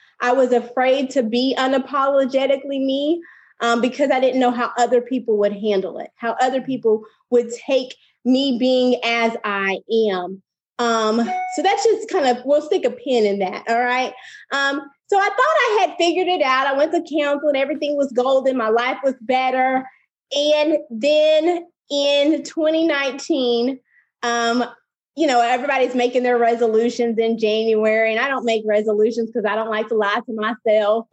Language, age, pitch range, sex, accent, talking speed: English, 20-39, 230-285 Hz, female, American, 170 wpm